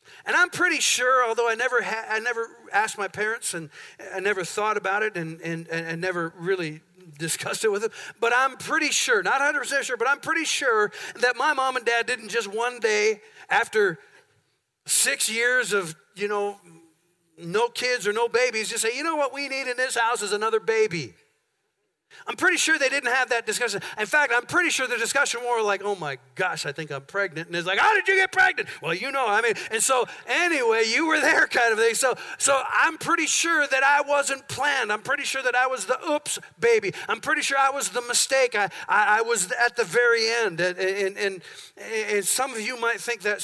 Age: 40-59